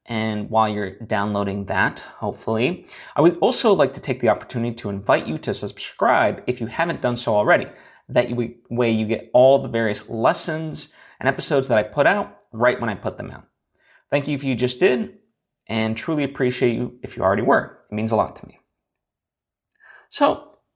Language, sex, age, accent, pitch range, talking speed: English, male, 30-49, American, 110-140 Hz, 190 wpm